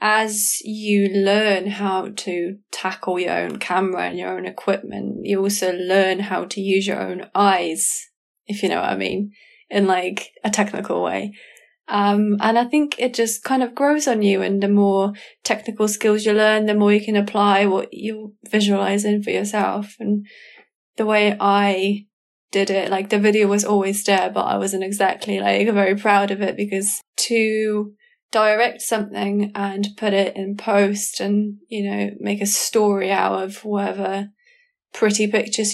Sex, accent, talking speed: female, British, 170 wpm